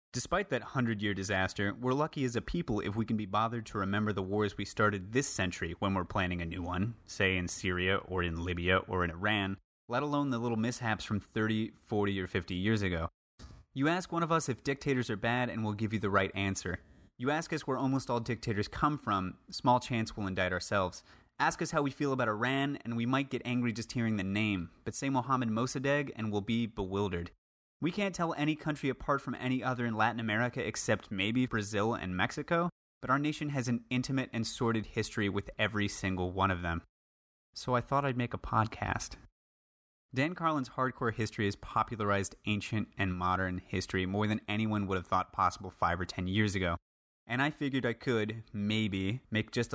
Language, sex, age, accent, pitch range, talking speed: English, male, 30-49, American, 95-125 Hz, 205 wpm